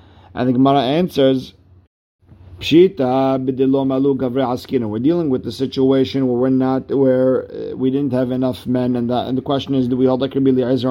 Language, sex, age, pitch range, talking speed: English, male, 50-69, 115-140 Hz, 155 wpm